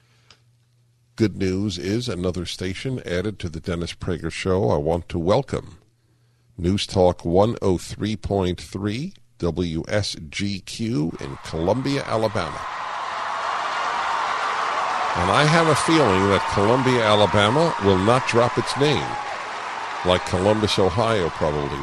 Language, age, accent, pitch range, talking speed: English, 50-69, American, 100-125 Hz, 105 wpm